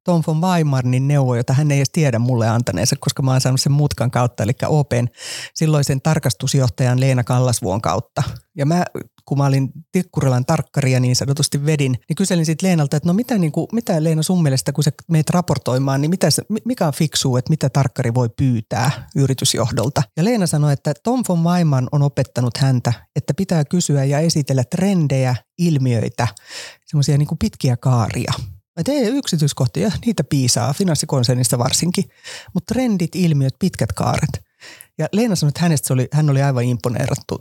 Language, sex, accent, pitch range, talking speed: Finnish, female, native, 125-160 Hz, 170 wpm